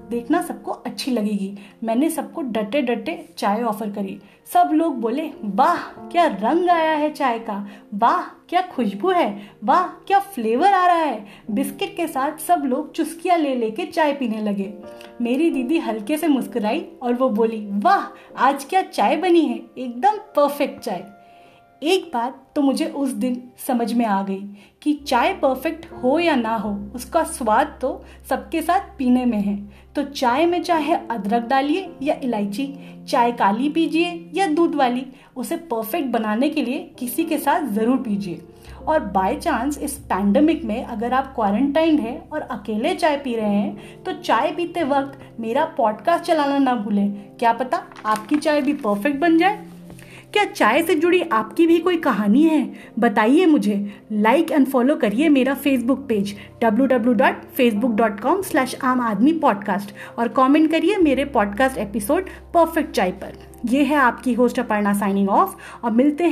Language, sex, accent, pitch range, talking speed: Hindi, female, native, 225-315 Hz, 165 wpm